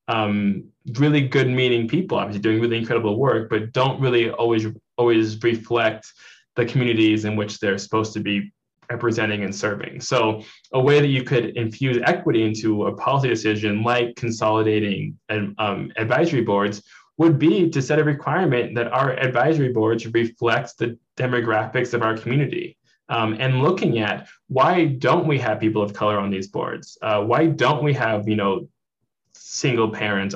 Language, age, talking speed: English, 20-39, 165 wpm